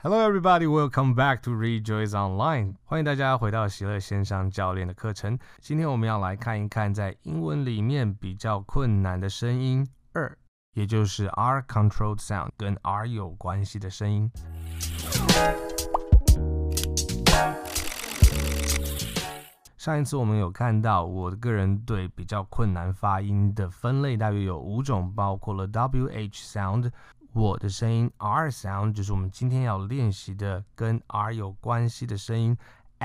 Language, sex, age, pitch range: Chinese, male, 20-39, 100-120 Hz